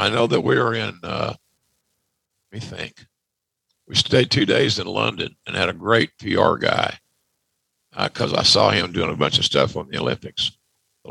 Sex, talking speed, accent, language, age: male, 195 wpm, American, English, 50-69